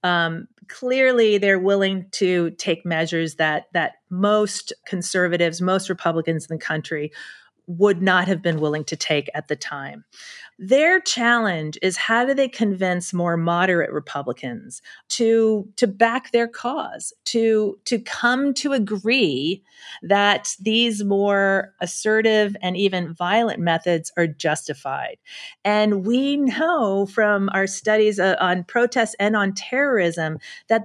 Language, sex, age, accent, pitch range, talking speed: English, female, 40-59, American, 175-230 Hz, 135 wpm